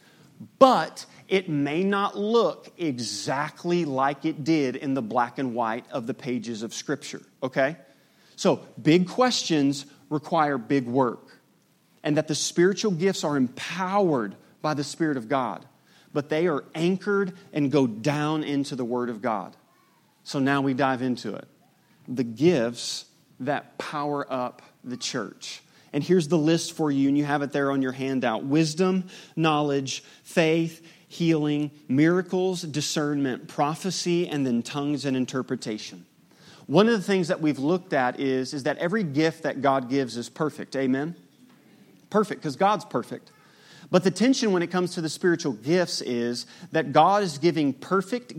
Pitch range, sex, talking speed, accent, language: 135-175 Hz, male, 160 wpm, American, English